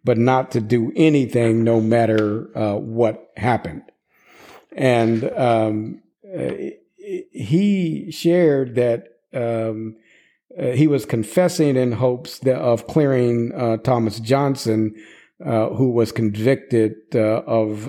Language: English